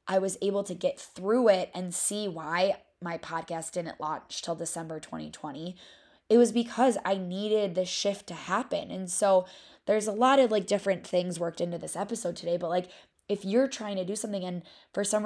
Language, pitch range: English, 175-205 Hz